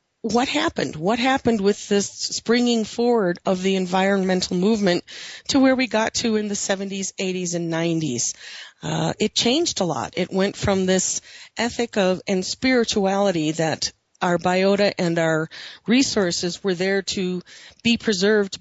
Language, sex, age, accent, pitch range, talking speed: English, female, 40-59, American, 170-210 Hz, 150 wpm